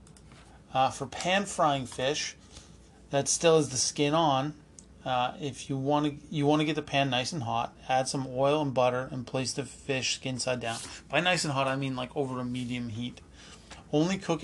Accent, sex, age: American, male, 30-49